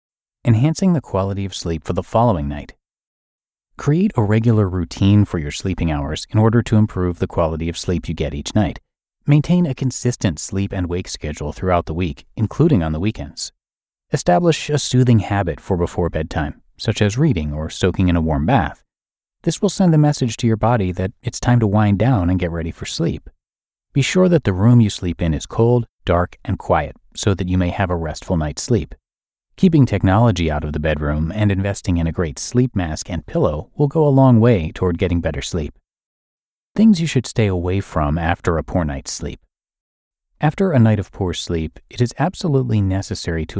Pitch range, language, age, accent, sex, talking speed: 85-120 Hz, English, 30-49, American, male, 200 wpm